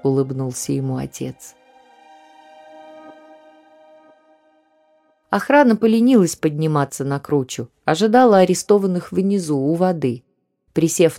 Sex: female